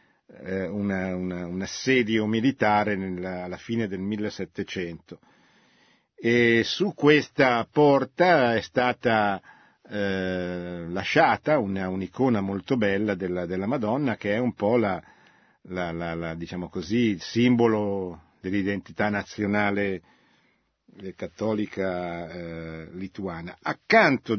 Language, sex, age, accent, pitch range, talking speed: Italian, male, 50-69, native, 95-120 Hz, 100 wpm